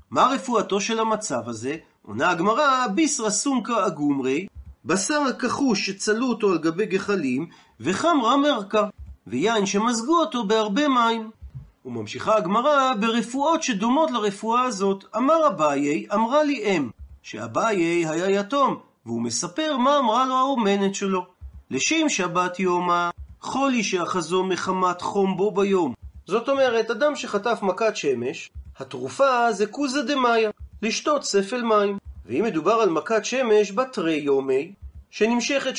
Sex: male